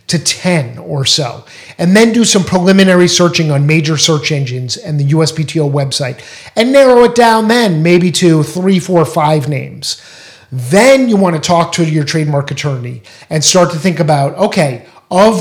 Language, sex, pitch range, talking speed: English, male, 145-180 Hz, 170 wpm